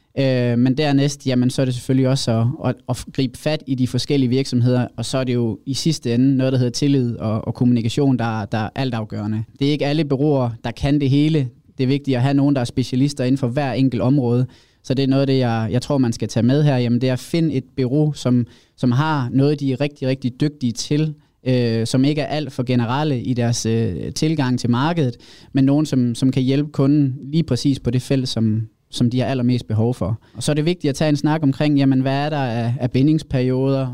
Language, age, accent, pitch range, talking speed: Danish, 20-39, native, 120-140 Hz, 245 wpm